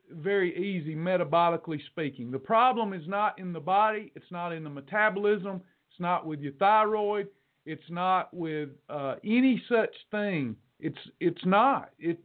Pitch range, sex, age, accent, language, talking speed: 170-205 Hz, male, 40-59, American, English, 155 wpm